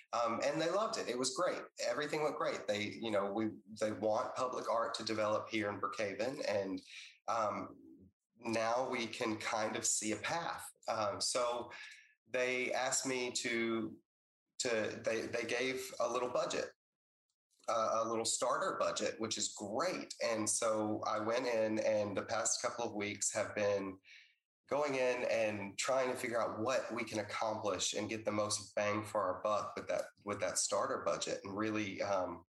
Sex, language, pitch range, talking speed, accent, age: male, English, 105-125 Hz, 175 wpm, American, 30-49